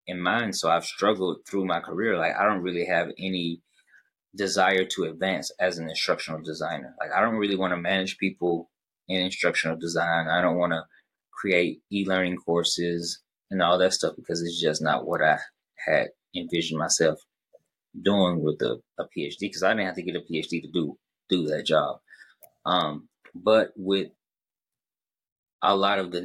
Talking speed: 175 wpm